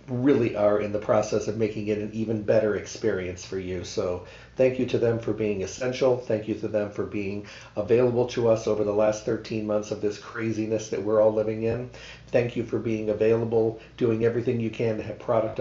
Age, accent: 50-69, American